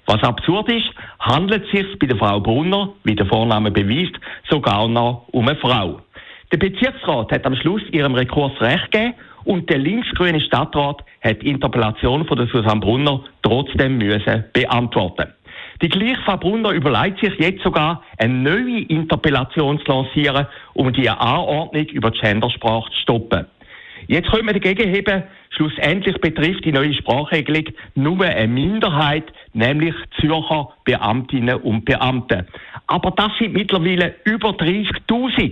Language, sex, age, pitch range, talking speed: German, male, 60-79, 125-180 Hz, 145 wpm